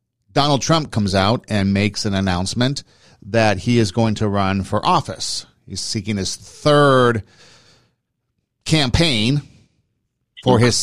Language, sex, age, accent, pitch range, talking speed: English, male, 50-69, American, 100-125 Hz, 125 wpm